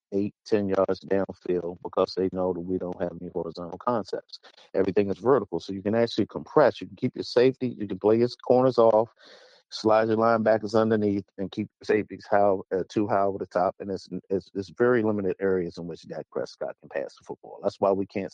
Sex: male